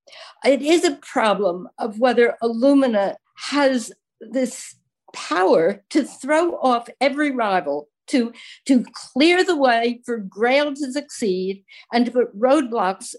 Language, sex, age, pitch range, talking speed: English, female, 60-79, 220-280 Hz, 125 wpm